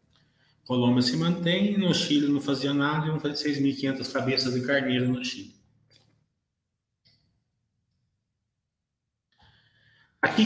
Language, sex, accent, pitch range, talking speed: Portuguese, male, Brazilian, 115-145 Hz, 105 wpm